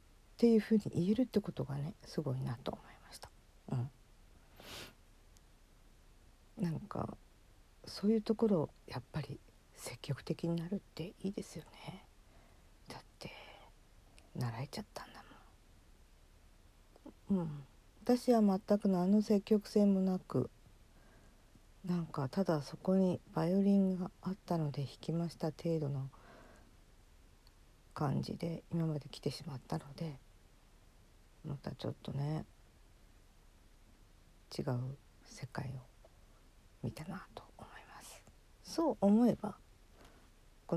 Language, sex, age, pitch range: Japanese, female, 50-69, 105-170 Hz